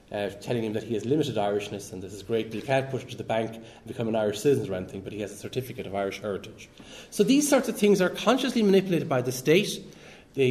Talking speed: 265 wpm